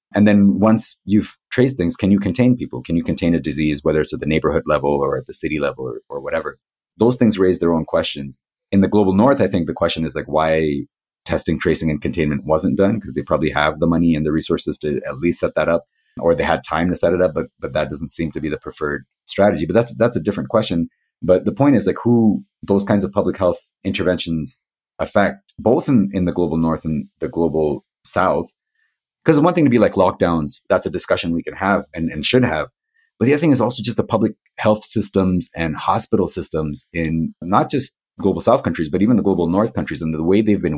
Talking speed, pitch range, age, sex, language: 240 wpm, 80-105 Hz, 30-49, male, English